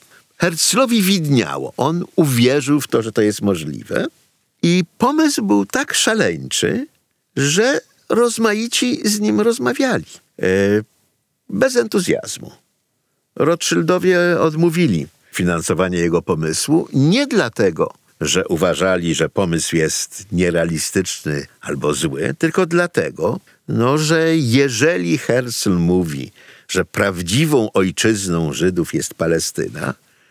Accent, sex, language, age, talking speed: native, male, Polish, 50-69, 100 wpm